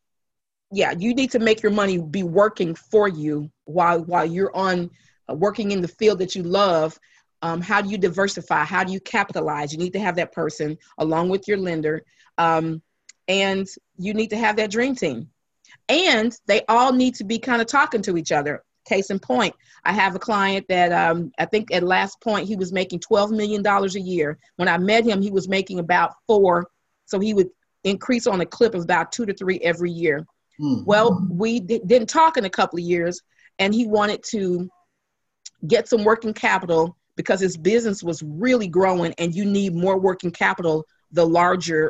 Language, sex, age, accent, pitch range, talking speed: English, female, 40-59, American, 170-215 Hz, 195 wpm